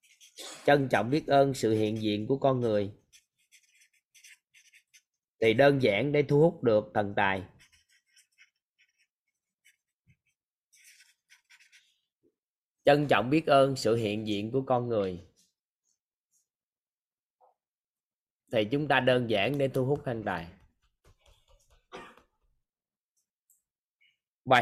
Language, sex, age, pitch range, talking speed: Vietnamese, male, 20-39, 115-140 Hz, 95 wpm